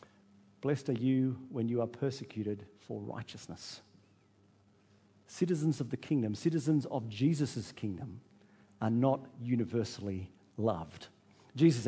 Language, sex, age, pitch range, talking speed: English, male, 50-69, 100-150 Hz, 110 wpm